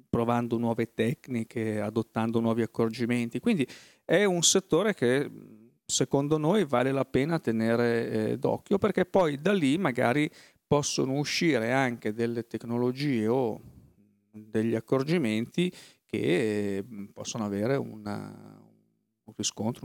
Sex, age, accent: male, 40-59, native